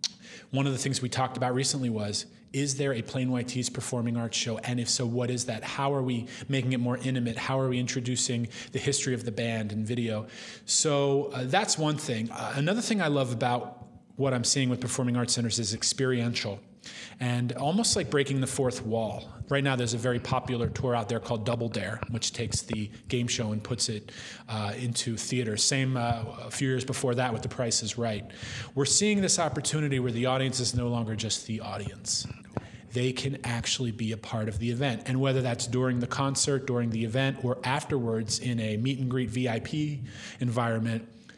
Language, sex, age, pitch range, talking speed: English, male, 30-49, 115-135 Hz, 205 wpm